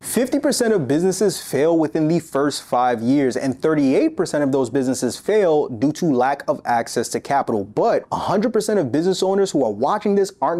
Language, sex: English, male